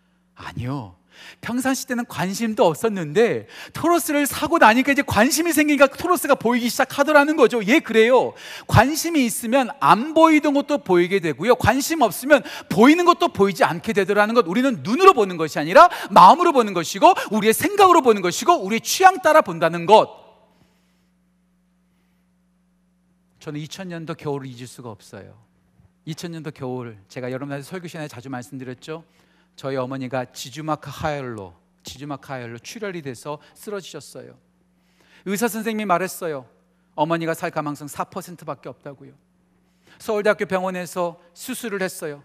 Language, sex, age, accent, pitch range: Korean, male, 40-59, native, 175-260 Hz